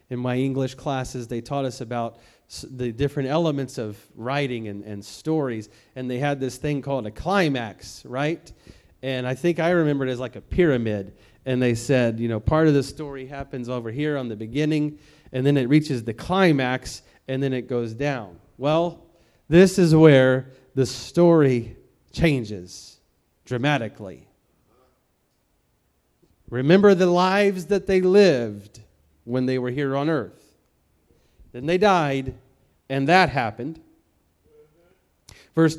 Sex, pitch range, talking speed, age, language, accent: male, 120-165 Hz, 150 wpm, 30-49, English, American